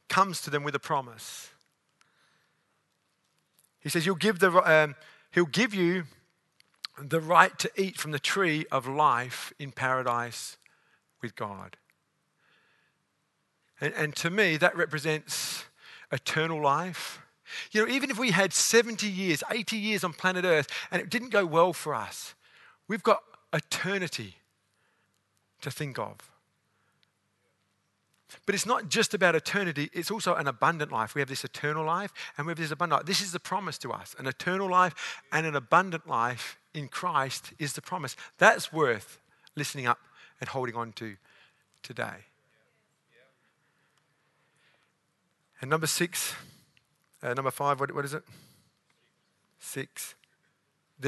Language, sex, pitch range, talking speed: English, male, 140-185 Hz, 140 wpm